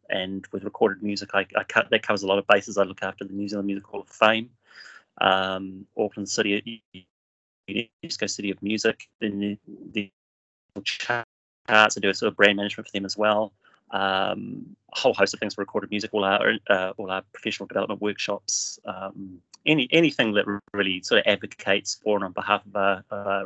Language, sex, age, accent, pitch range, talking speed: English, male, 30-49, British, 95-110 Hz, 195 wpm